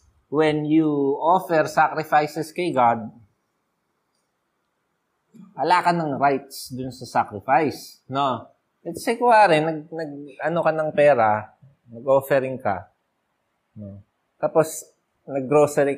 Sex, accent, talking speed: male, native, 95 wpm